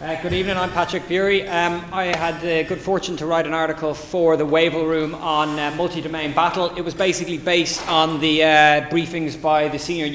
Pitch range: 140-175 Hz